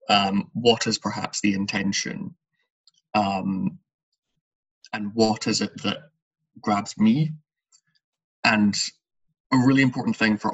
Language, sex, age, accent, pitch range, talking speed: English, male, 20-39, British, 100-130 Hz, 115 wpm